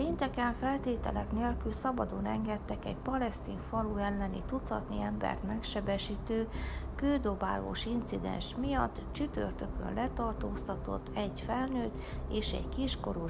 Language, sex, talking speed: Hungarian, female, 100 wpm